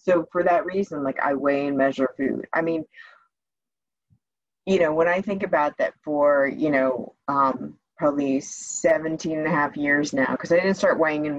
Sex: female